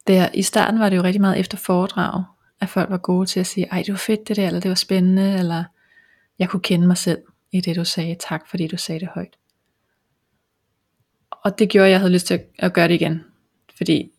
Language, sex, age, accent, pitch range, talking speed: Danish, female, 20-39, native, 180-210 Hz, 235 wpm